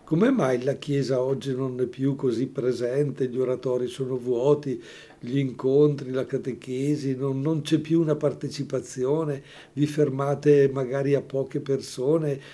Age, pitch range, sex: 60-79, 130-150 Hz, male